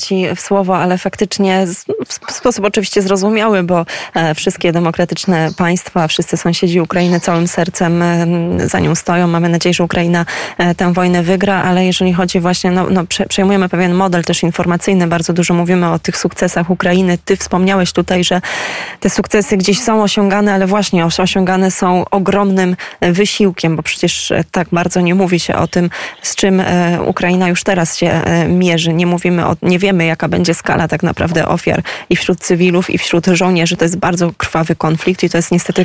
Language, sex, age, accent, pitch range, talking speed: Polish, female, 20-39, native, 175-190 Hz, 170 wpm